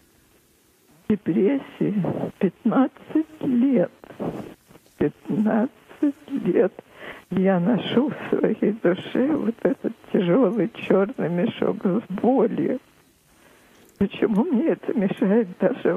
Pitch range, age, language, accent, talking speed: 180-230 Hz, 50-69, Russian, native, 85 wpm